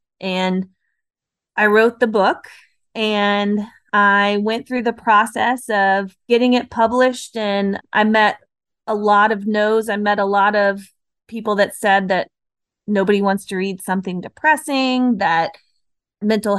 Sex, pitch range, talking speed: female, 190-220 Hz, 140 wpm